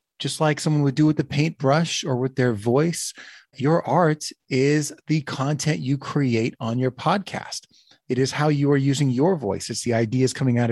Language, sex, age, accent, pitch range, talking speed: English, male, 30-49, American, 120-155 Hz, 195 wpm